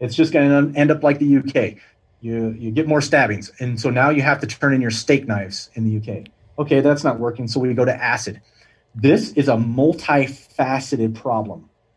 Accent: American